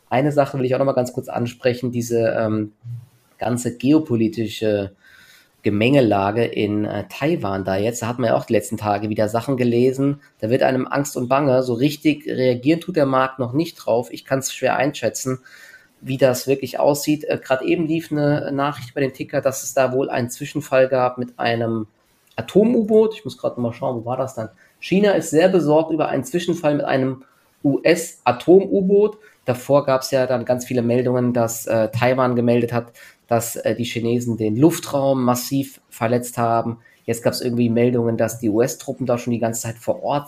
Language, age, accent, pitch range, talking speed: German, 20-39, German, 115-140 Hz, 195 wpm